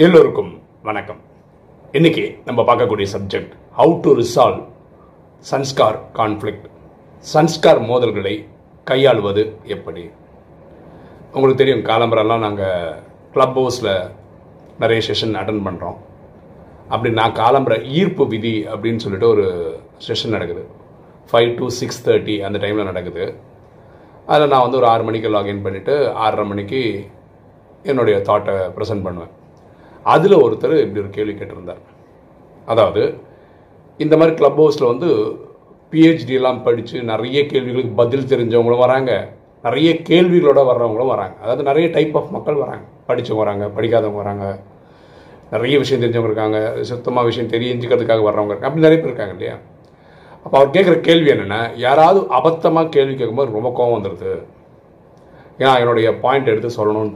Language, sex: Tamil, male